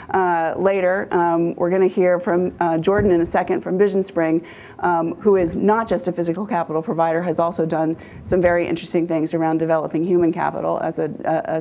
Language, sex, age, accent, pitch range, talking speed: English, female, 30-49, American, 160-180 Hz, 200 wpm